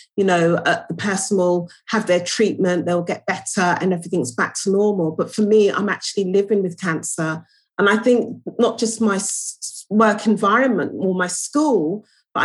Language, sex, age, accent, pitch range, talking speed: English, female, 40-59, British, 185-225 Hz, 175 wpm